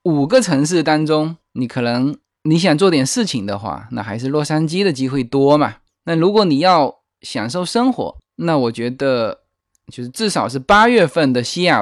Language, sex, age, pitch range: Chinese, male, 20-39, 125-180 Hz